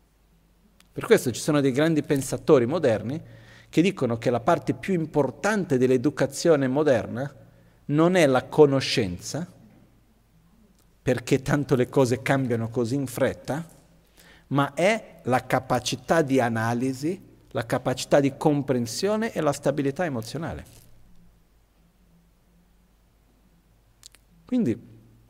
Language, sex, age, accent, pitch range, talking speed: Italian, male, 50-69, native, 115-145 Hz, 105 wpm